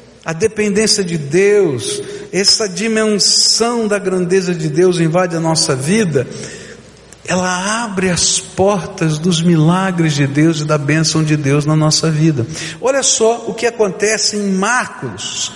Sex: male